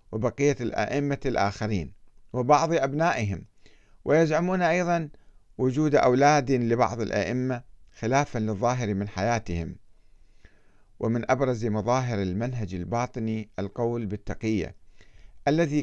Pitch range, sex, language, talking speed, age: 105-145 Hz, male, Arabic, 85 wpm, 50-69